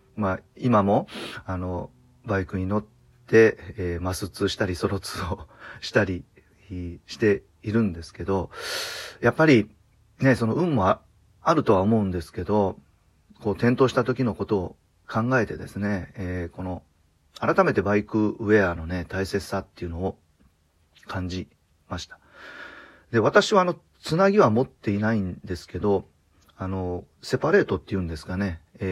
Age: 40-59